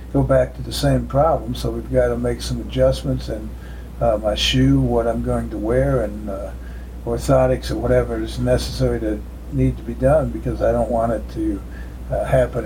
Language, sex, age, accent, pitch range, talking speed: English, male, 60-79, American, 100-130 Hz, 190 wpm